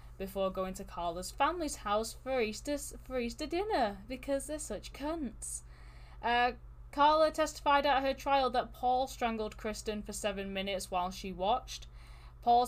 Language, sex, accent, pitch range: English, female, British, 180-230 Hz